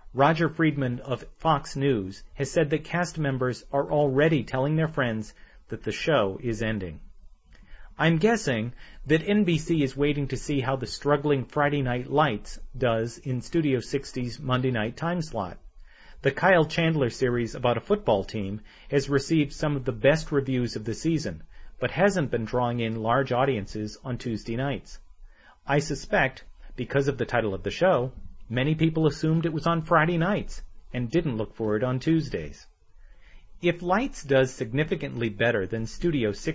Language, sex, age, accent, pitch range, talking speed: English, male, 40-59, American, 110-155 Hz, 165 wpm